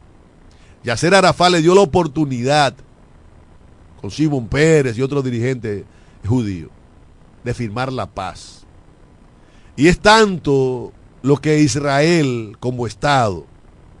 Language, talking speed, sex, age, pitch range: Spanish, 105 wpm, male, 50-69, 95-140 Hz